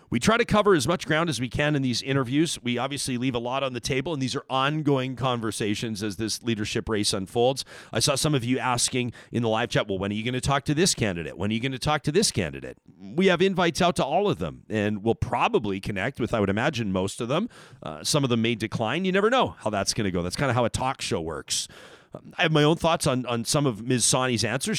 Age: 40-59